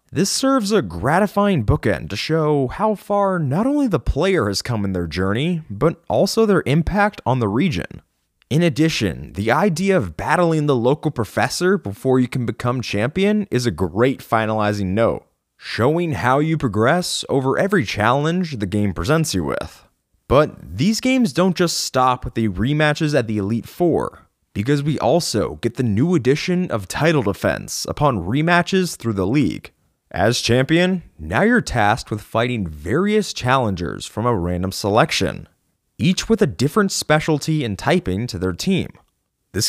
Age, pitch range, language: 20-39, 115-180 Hz, English